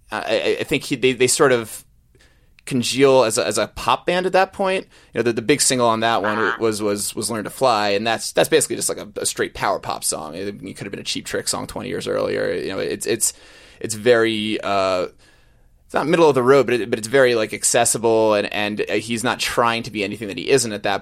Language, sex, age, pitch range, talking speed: English, male, 20-39, 110-145 Hz, 255 wpm